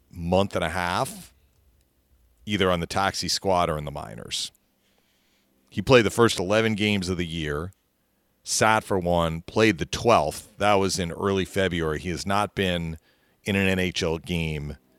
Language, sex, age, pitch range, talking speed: English, male, 40-59, 80-100 Hz, 165 wpm